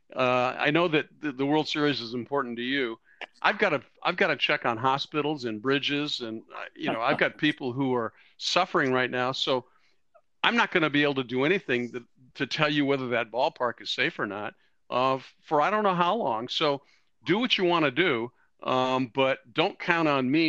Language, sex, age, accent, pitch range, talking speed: English, male, 50-69, American, 125-155 Hz, 220 wpm